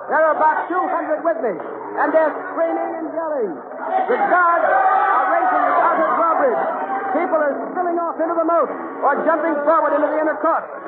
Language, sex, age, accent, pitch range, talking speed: English, male, 50-69, American, 290-355 Hz, 175 wpm